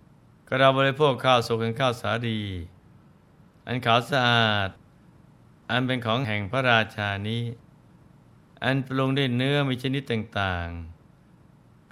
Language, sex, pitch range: Thai, male, 115-140 Hz